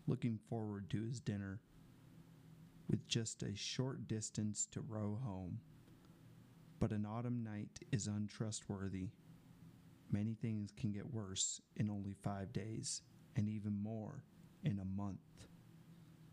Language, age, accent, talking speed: English, 30-49, American, 125 wpm